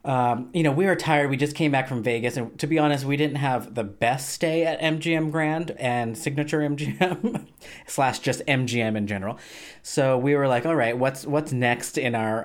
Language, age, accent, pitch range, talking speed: English, 30-49, American, 120-150 Hz, 210 wpm